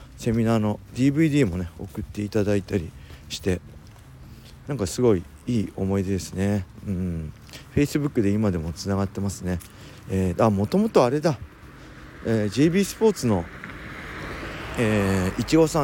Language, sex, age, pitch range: Japanese, male, 40-59, 95-120 Hz